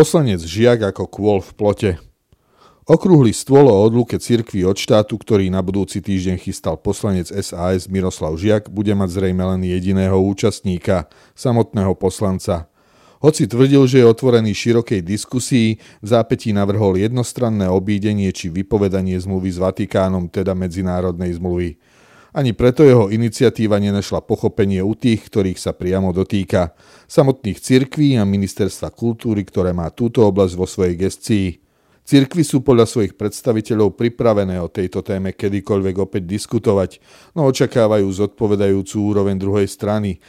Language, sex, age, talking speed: Slovak, male, 40-59, 135 wpm